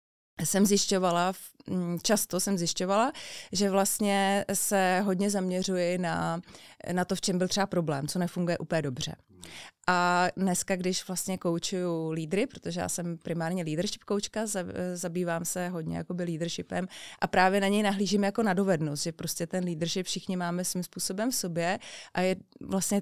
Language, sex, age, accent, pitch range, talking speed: Czech, female, 30-49, native, 165-195 Hz, 155 wpm